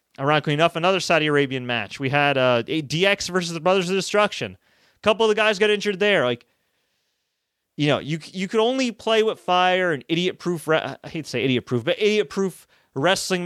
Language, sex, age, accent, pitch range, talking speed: English, male, 30-49, American, 135-180 Hz, 215 wpm